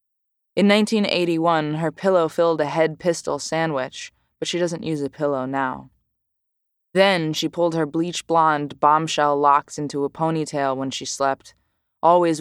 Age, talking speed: 20-39, 140 wpm